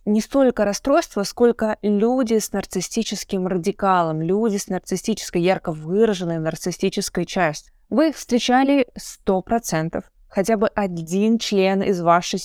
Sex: female